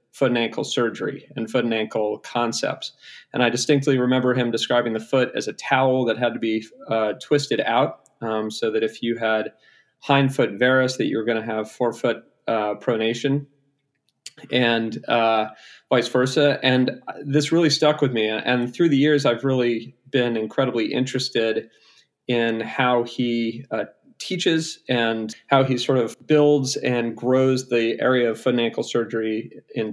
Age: 40-59